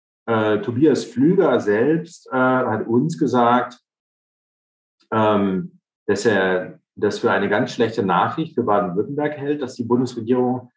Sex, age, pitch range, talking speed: male, 40-59, 105-135 Hz, 125 wpm